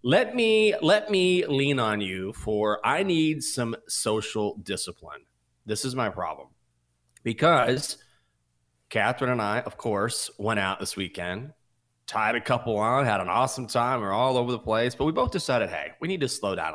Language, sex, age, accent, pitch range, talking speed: English, male, 30-49, American, 105-160 Hz, 185 wpm